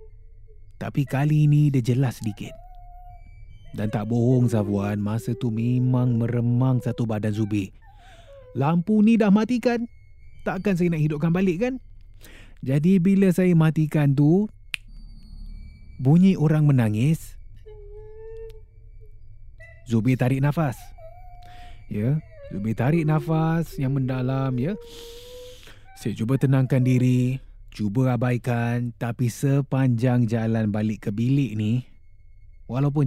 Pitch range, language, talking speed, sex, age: 105-150 Hz, Malay, 105 wpm, male, 30-49